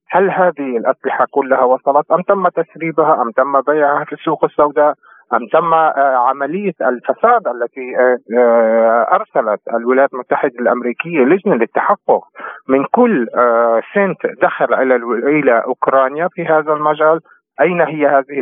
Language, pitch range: Arabic, 130-165 Hz